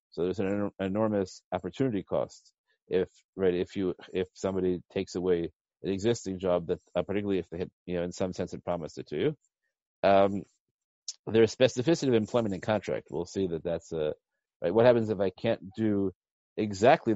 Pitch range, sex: 90-115 Hz, male